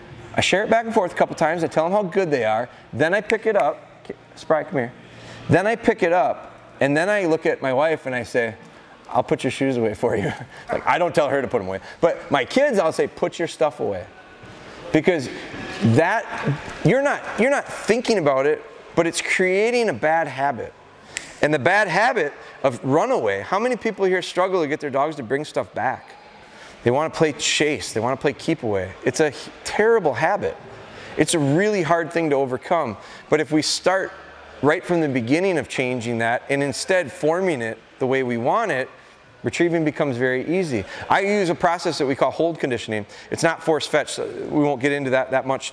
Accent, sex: American, male